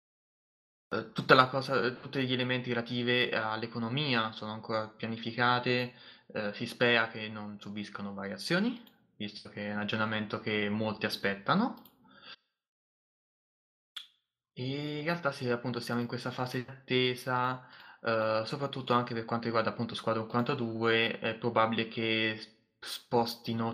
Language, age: Italian, 20-39